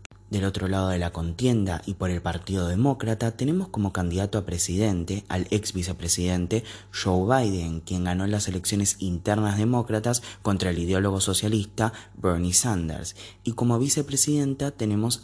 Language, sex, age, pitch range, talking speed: Spanish, male, 20-39, 90-115 Hz, 145 wpm